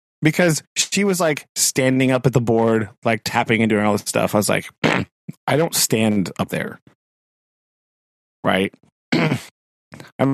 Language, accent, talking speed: English, American, 150 wpm